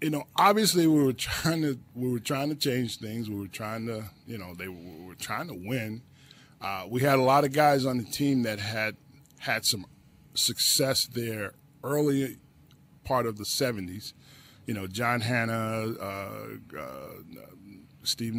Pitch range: 120-150 Hz